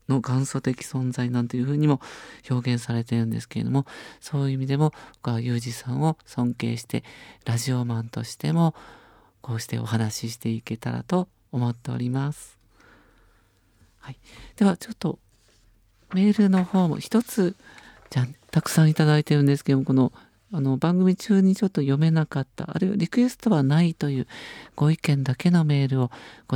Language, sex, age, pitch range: Japanese, male, 40-59, 120-165 Hz